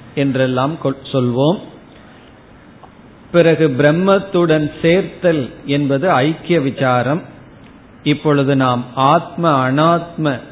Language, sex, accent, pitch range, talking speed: Tamil, male, native, 135-165 Hz, 75 wpm